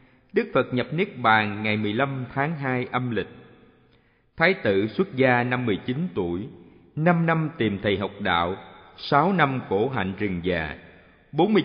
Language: Vietnamese